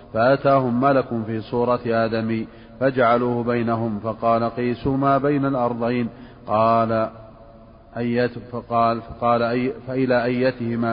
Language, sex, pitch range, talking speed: Arabic, male, 115-125 Hz, 105 wpm